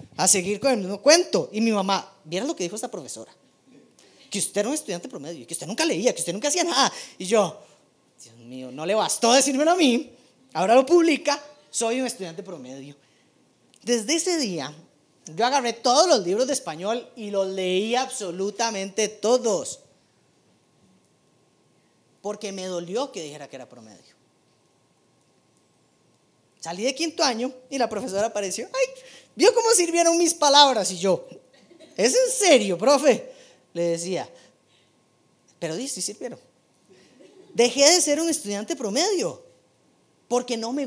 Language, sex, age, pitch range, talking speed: Spanish, female, 30-49, 180-275 Hz, 155 wpm